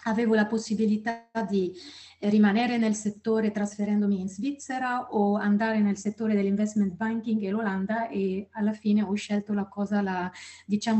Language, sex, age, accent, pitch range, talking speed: Italian, female, 30-49, native, 195-215 Hz, 140 wpm